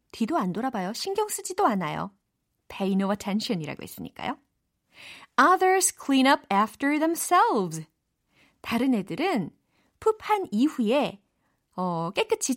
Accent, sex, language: native, female, Korean